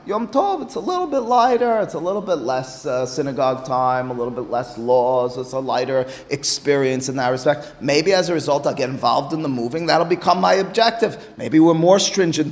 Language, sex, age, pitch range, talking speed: English, male, 30-49, 130-160 Hz, 215 wpm